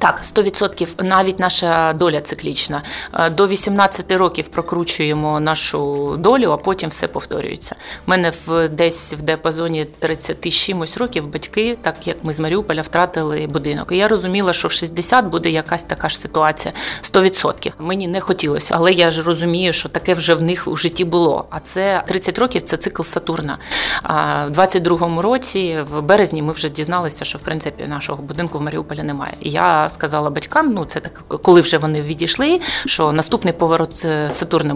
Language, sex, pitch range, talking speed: Ukrainian, female, 155-190 Hz, 175 wpm